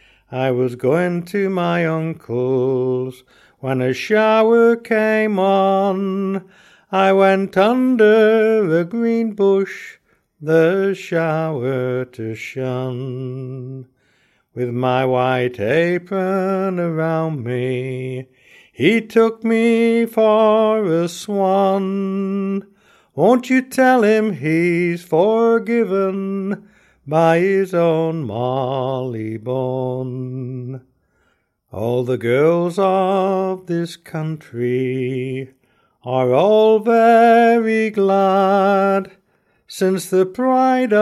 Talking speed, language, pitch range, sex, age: 80 wpm, English, 130-200 Hz, male, 60-79